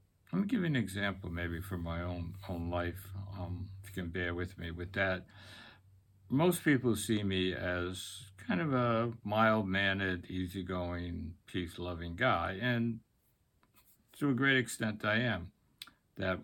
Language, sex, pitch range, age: English, male, 90-115 Hz, 60-79